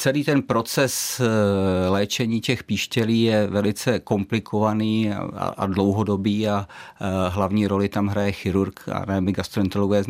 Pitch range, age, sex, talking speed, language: 95-115 Hz, 50-69, male, 120 wpm, Czech